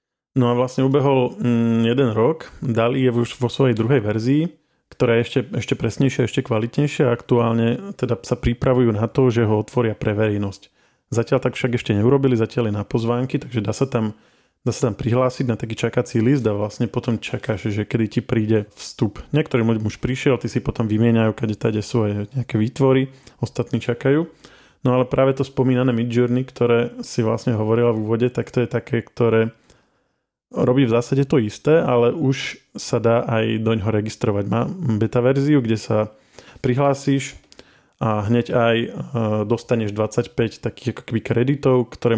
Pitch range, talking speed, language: 110-125 Hz, 170 wpm, Slovak